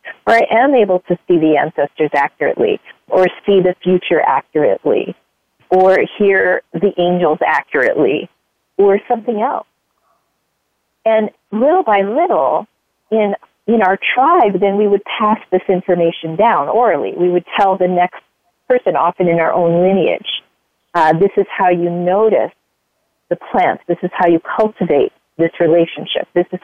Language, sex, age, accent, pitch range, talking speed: English, female, 40-59, American, 175-230 Hz, 150 wpm